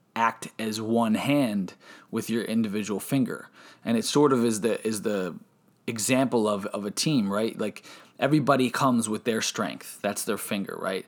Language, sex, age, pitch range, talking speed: English, male, 20-39, 110-135 Hz, 175 wpm